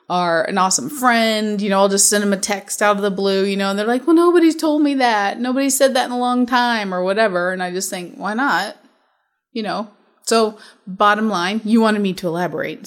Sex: female